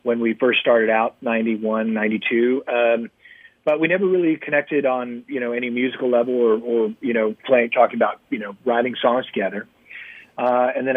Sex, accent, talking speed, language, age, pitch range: male, American, 180 wpm, English, 40-59, 115-130 Hz